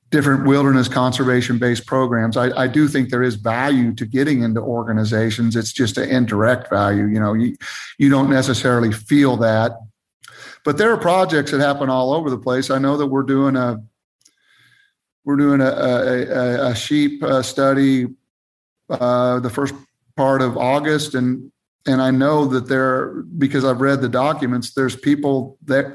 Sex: male